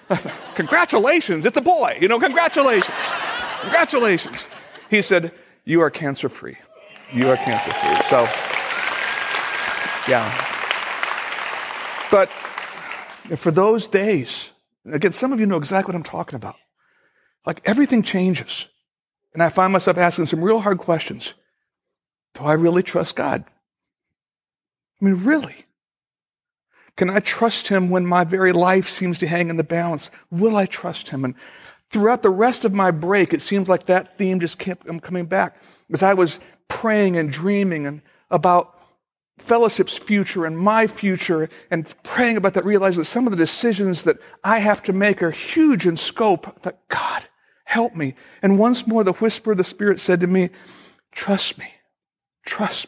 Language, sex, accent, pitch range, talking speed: English, male, American, 175-220 Hz, 155 wpm